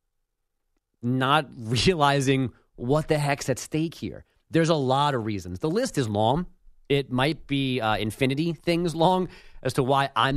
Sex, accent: male, American